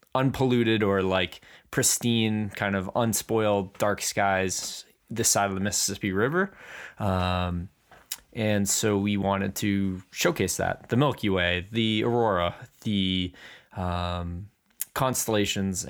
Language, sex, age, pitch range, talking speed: English, male, 20-39, 95-110 Hz, 115 wpm